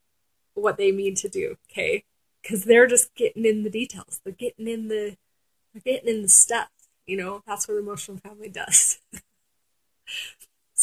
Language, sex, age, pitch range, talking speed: English, female, 30-49, 200-270 Hz, 155 wpm